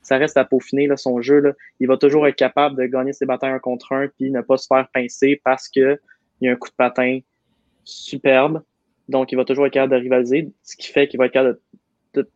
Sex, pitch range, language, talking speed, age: male, 125-135 Hz, French, 250 wpm, 20-39